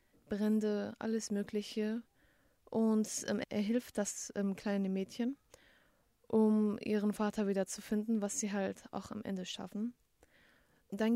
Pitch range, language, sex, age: 200-230 Hz, German, female, 20-39